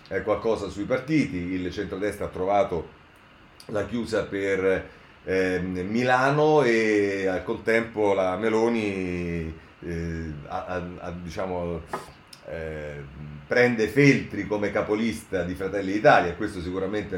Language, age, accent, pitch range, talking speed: Italian, 40-59, native, 85-105 Hz, 110 wpm